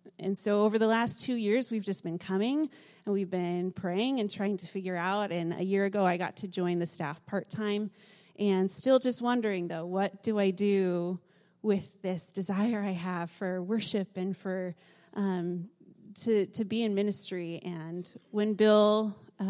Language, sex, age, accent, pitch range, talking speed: English, female, 20-39, American, 180-210 Hz, 180 wpm